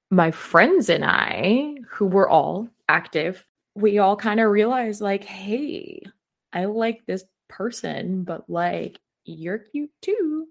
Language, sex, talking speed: English, female, 135 wpm